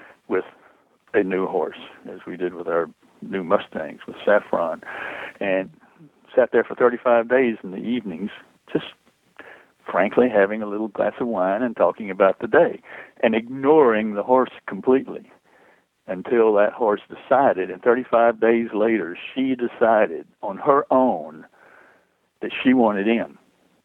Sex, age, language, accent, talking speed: male, 60-79, English, American, 145 wpm